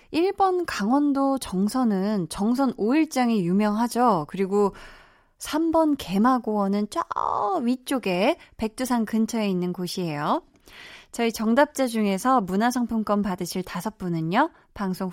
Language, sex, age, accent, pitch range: Korean, female, 20-39, native, 180-245 Hz